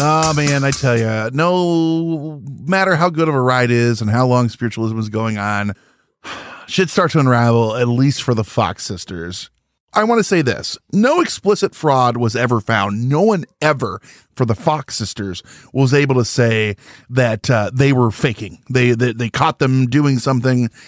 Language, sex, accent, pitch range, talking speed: English, male, American, 115-150 Hz, 185 wpm